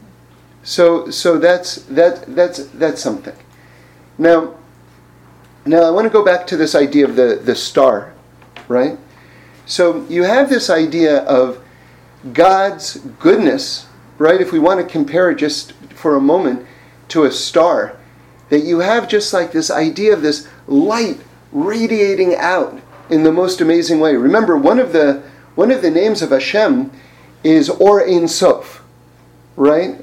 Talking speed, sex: 150 wpm, male